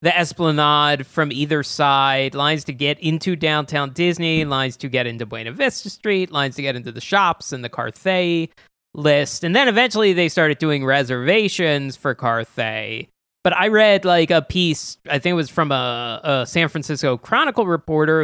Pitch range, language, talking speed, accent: 130-165 Hz, English, 180 wpm, American